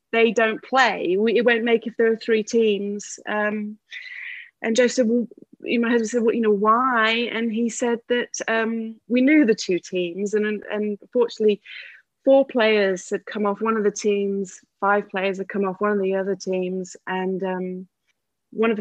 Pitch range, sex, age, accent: 205-235 Hz, female, 30-49, British